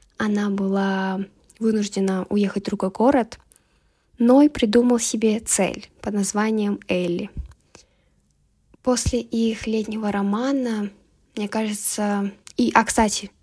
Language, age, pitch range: Russian, 10-29, 200-230 Hz